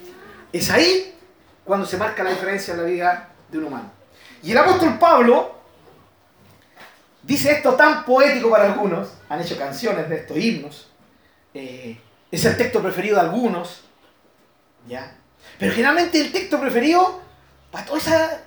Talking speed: 145 wpm